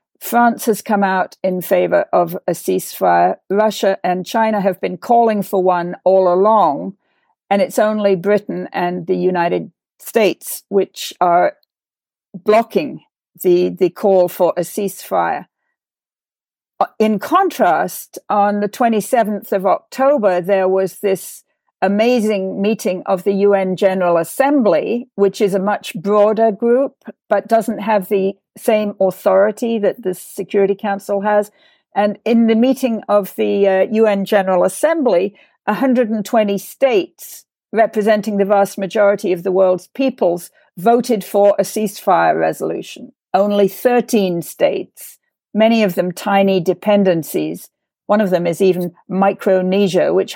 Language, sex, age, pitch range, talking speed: English, female, 50-69, 190-220 Hz, 130 wpm